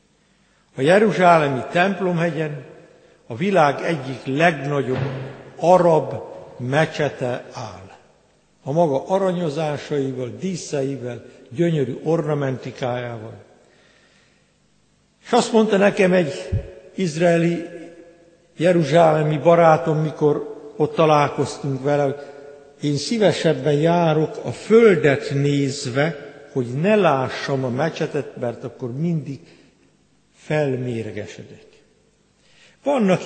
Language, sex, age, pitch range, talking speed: Hungarian, male, 60-79, 140-180 Hz, 80 wpm